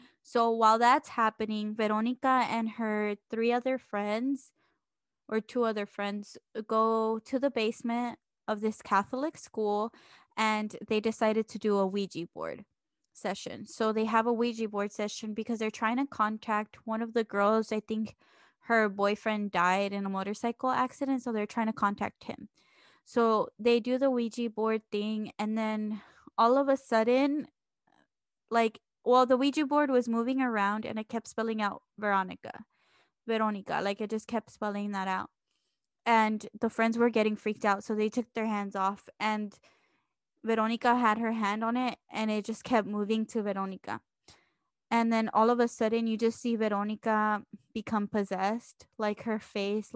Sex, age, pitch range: female, 10-29, 210-235 Hz